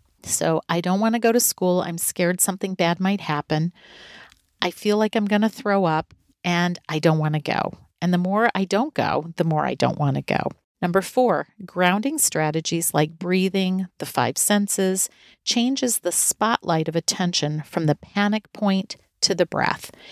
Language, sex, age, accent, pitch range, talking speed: English, female, 40-59, American, 160-200 Hz, 185 wpm